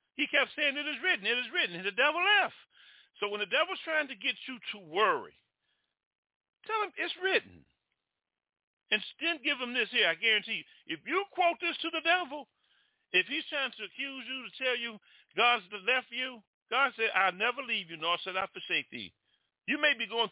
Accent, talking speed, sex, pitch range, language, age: American, 205 wpm, male, 175-260 Hz, English, 50-69